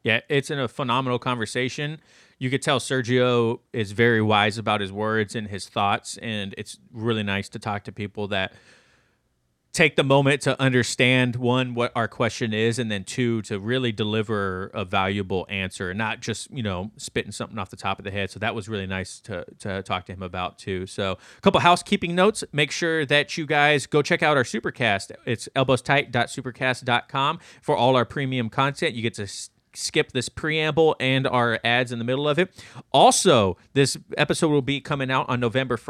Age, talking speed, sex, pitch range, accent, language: 30-49, 195 wpm, male, 105-135 Hz, American, English